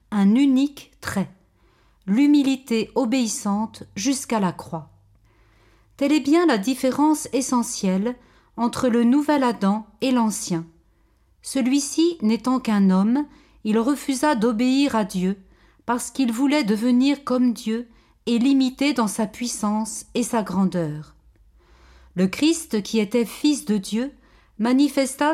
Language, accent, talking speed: French, French, 120 wpm